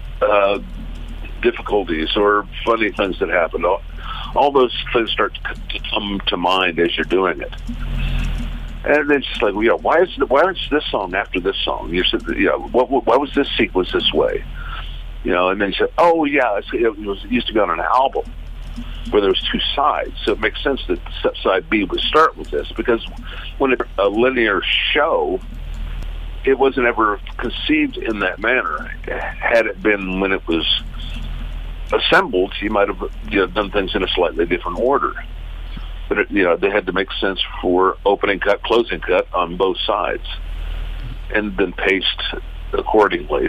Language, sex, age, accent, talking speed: English, male, 60-79, American, 180 wpm